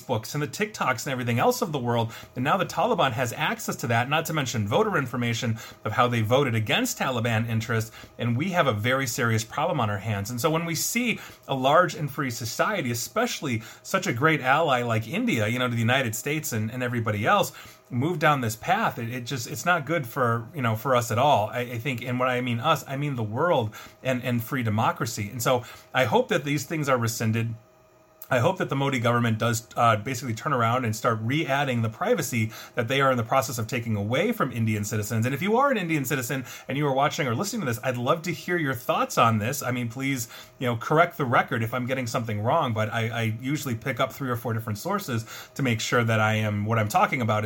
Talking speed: 245 wpm